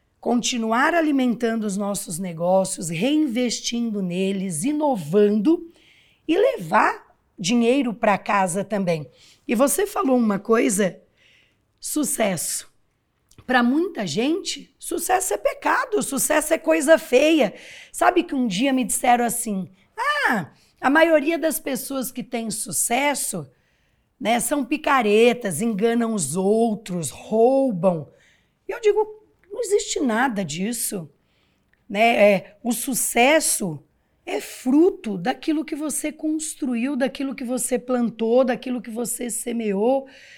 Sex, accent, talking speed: female, Brazilian, 115 wpm